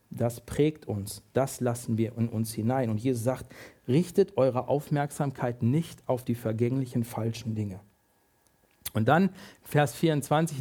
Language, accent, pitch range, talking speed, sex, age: German, German, 115-170 Hz, 140 wpm, male, 50-69